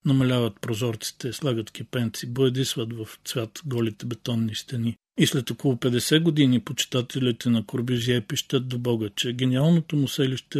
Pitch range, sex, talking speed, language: 120-140 Hz, male, 140 wpm, Bulgarian